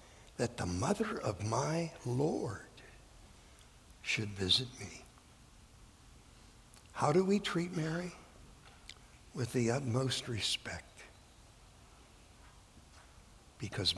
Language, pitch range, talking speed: English, 110-150 Hz, 80 wpm